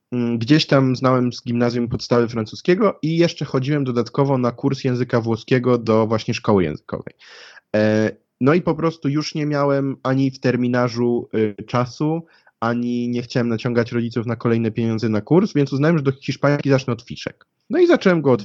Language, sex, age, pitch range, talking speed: Polish, male, 20-39, 115-140 Hz, 170 wpm